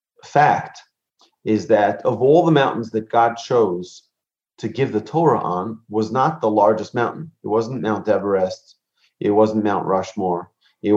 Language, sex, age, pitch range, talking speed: English, male, 30-49, 105-130 Hz, 160 wpm